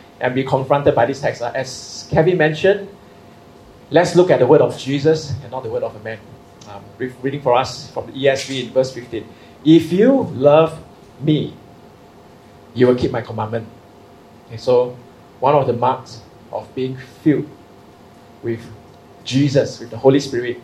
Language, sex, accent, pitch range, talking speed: English, male, Malaysian, 120-155 Hz, 160 wpm